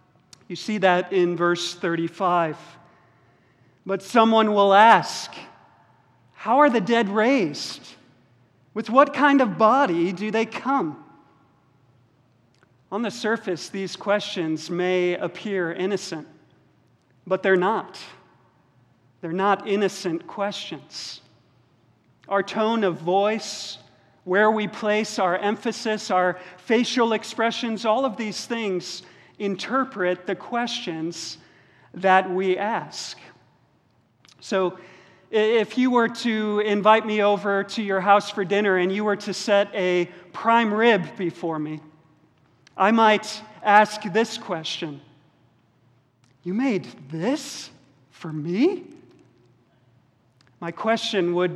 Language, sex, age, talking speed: English, male, 40-59, 110 wpm